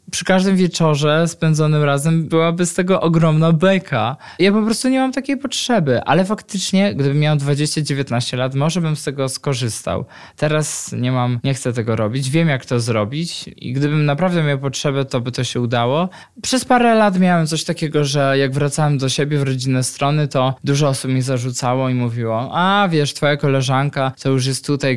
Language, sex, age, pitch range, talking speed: Polish, male, 20-39, 125-160 Hz, 185 wpm